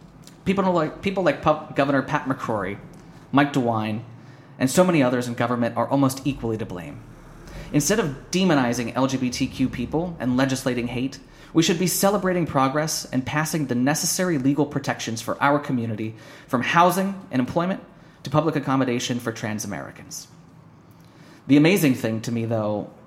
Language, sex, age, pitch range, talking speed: English, male, 30-49, 120-155 Hz, 150 wpm